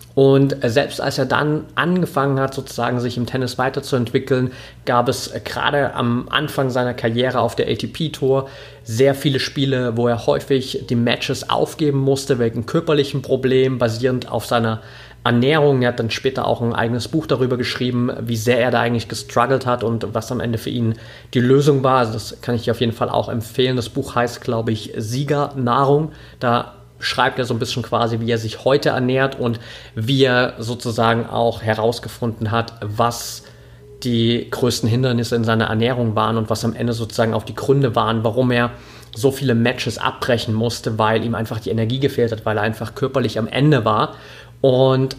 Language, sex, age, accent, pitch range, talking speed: German, male, 30-49, German, 115-135 Hz, 185 wpm